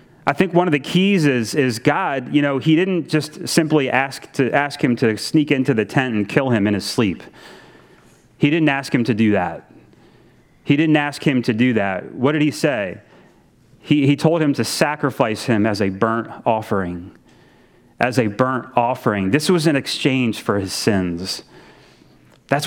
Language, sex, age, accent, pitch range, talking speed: English, male, 30-49, American, 135-190 Hz, 190 wpm